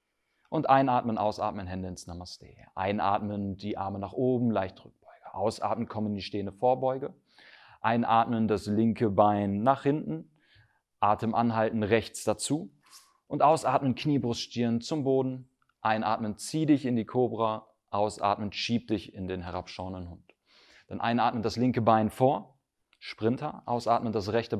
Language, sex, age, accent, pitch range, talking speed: German, male, 30-49, German, 100-125 Hz, 140 wpm